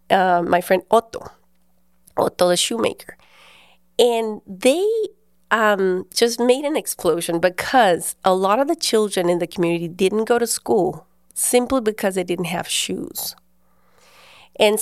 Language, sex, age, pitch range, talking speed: English, female, 30-49, 175-210 Hz, 140 wpm